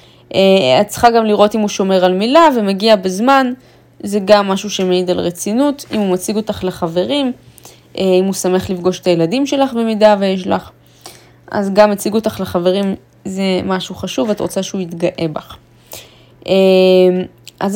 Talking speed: 155 wpm